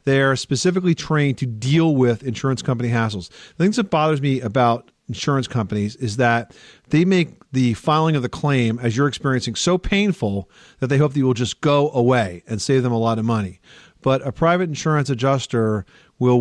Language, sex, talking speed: English, male, 200 wpm